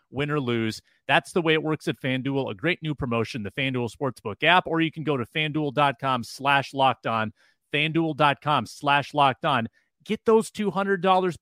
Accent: American